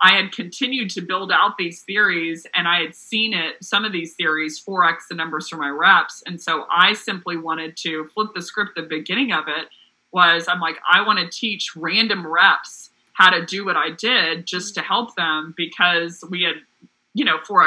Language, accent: English, American